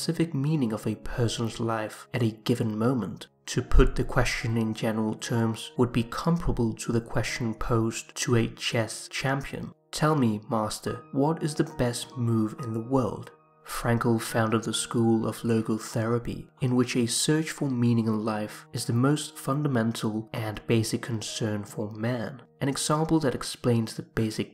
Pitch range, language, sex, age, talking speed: 110-135 Hz, English, male, 20-39, 170 wpm